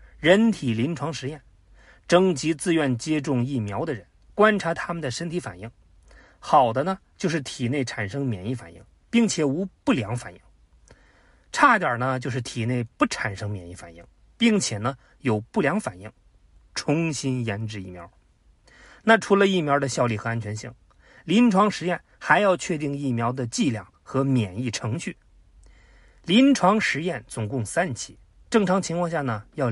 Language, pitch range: Chinese, 105-170 Hz